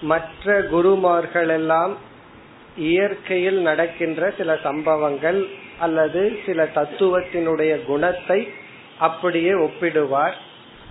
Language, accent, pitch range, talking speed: Tamil, native, 155-185 Hz, 60 wpm